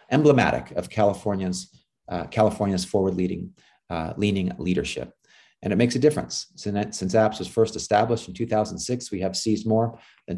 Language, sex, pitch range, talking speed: English, male, 90-115 Hz, 150 wpm